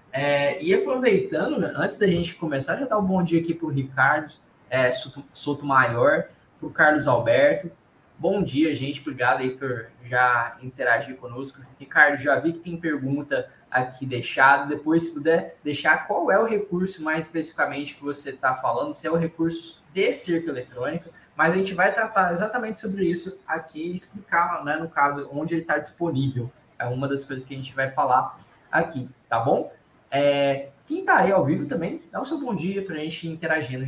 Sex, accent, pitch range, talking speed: male, Brazilian, 140-180 Hz, 190 wpm